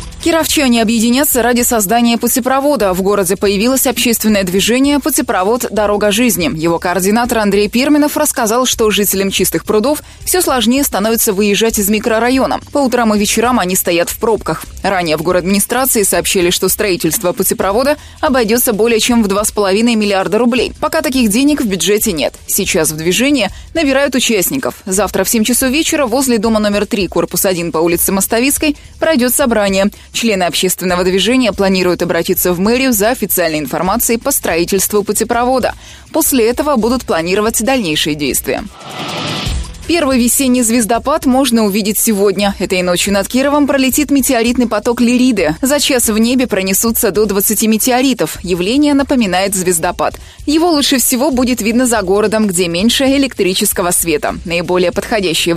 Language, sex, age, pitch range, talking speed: Russian, female, 20-39, 195-255 Hz, 145 wpm